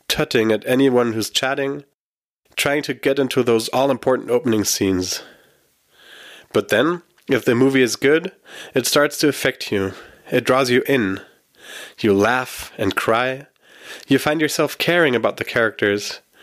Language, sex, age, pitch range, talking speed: English, male, 30-49, 115-150 Hz, 145 wpm